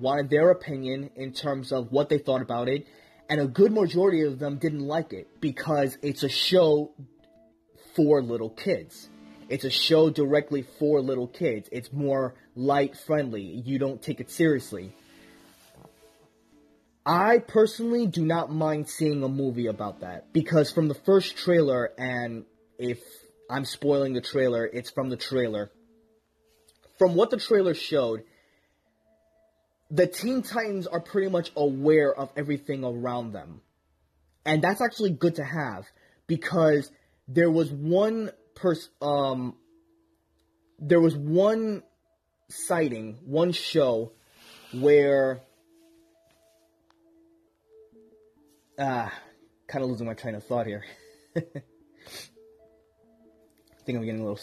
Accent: American